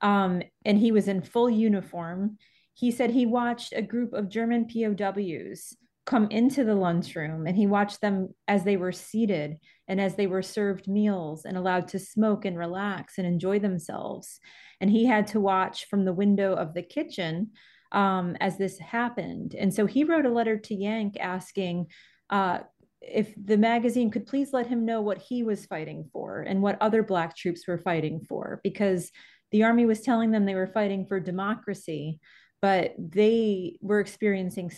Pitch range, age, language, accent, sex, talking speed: 185-225 Hz, 30-49, English, American, female, 180 wpm